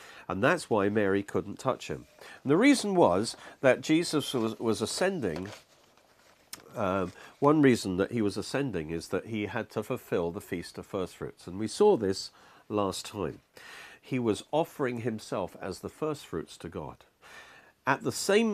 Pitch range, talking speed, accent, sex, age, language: 95-140 Hz, 160 wpm, British, male, 50-69, English